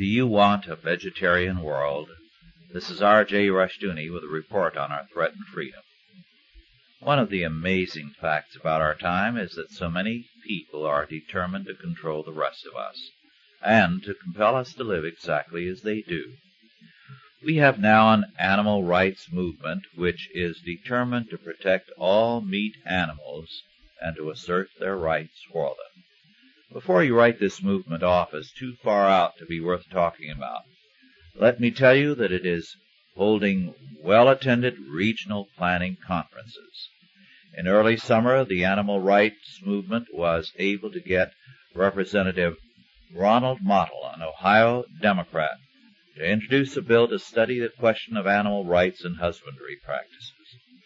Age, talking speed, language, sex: 60-79, 150 wpm, English, male